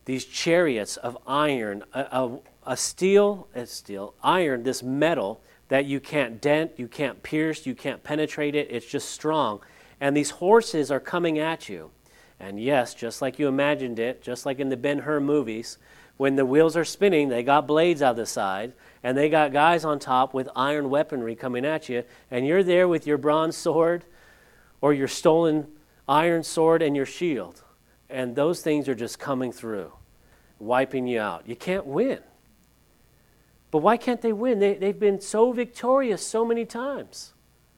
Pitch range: 135-175 Hz